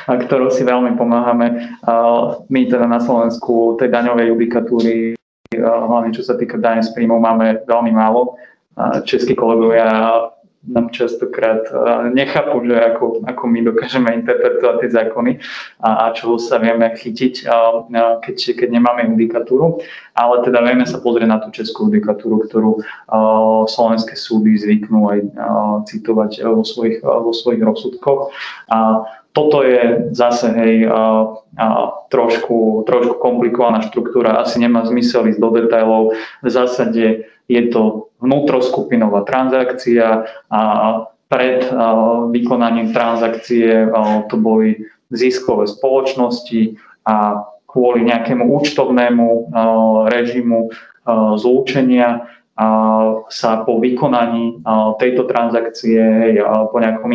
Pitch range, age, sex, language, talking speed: 110-120 Hz, 20-39, male, Slovak, 125 wpm